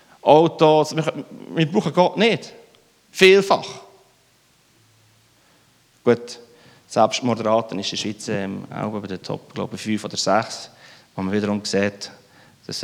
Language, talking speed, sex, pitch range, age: German, 120 wpm, male, 120-175 Hz, 30-49